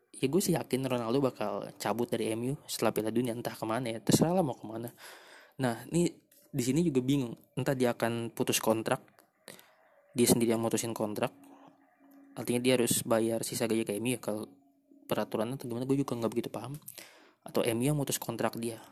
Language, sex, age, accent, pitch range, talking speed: Indonesian, male, 20-39, native, 115-140 Hz, 185 wpm